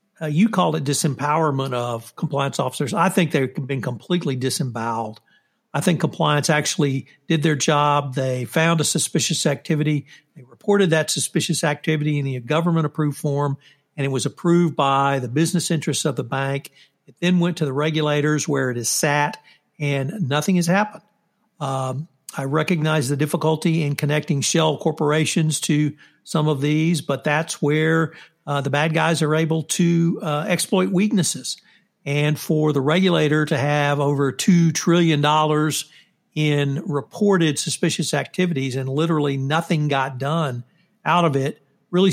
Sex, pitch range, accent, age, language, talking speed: male, 140-170 Hz, American, 60-79, English, 155 wpm